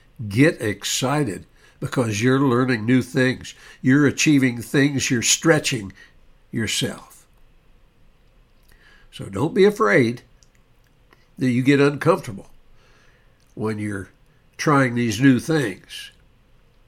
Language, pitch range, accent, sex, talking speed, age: English, 120-145 Hz, American, male, 95 wpm, 60-79